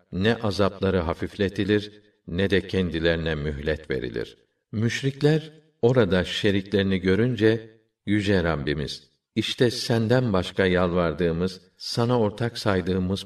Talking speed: 95 wpm